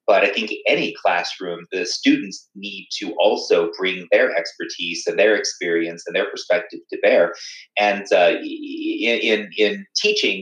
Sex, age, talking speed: male, 30-49, 150 wpm